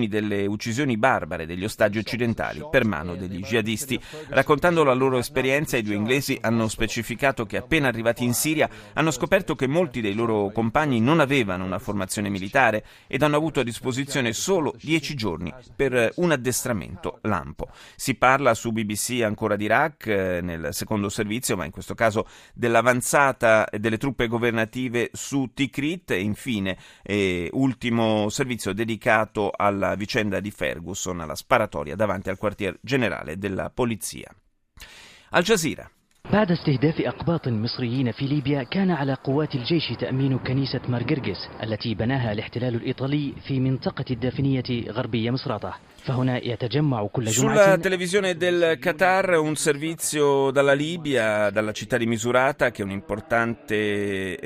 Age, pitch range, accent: 30-49, 105-135 Hz, native